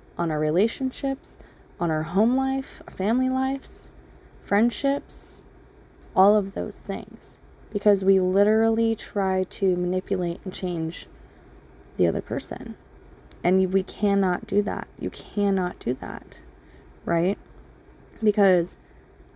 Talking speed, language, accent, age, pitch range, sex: 115 wpm, English, American, 20-39, 180-215 Hz, female